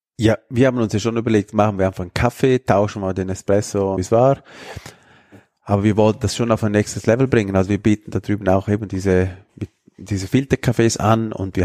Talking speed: 220 wpm